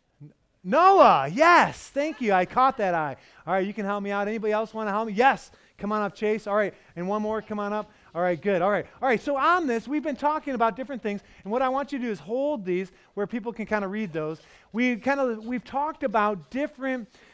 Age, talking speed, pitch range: 30-49, 250 wpm, 175-230 Hz